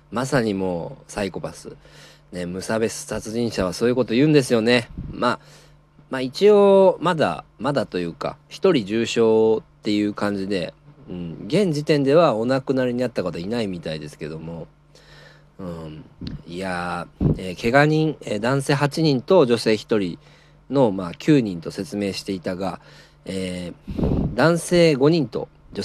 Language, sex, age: Japanese, male, 40-59